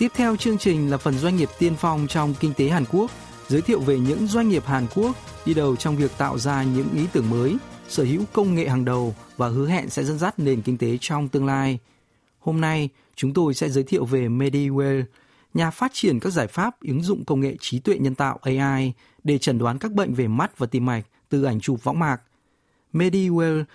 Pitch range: 130-170 Hz